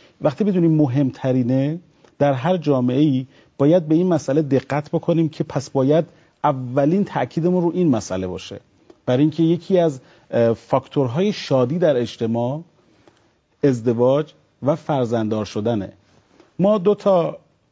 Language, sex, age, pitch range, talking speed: Persian, male, 40-59, 125-165 Hz, 120 wpm